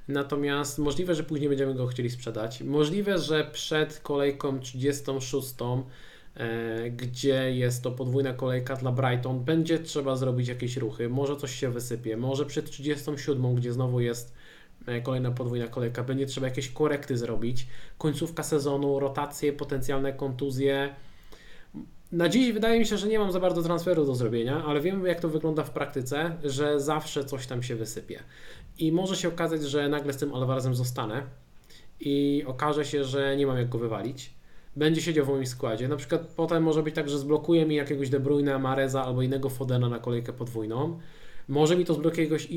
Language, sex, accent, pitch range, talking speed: Polish, male, native, 130-155 Hz, 170 wpm